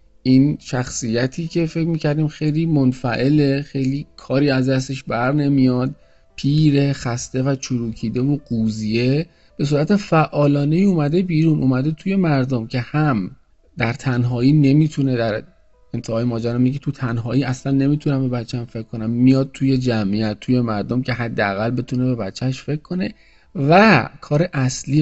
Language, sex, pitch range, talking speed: Persian, male, 120-150 Hz, 140 wpm